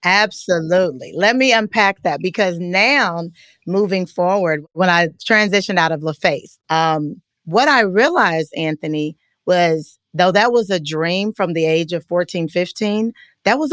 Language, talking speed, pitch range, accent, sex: English, 150 wpm, 170-210 Hz, American, female